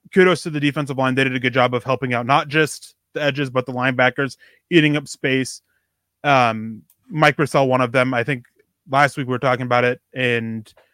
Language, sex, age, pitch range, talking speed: English, male, 20-39, 125-150 Hz, 215 wpm